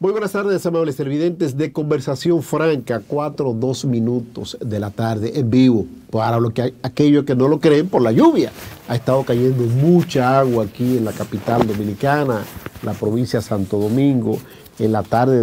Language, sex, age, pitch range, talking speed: Spanish, male, 50-69, 115-140 Hz, 180 wpm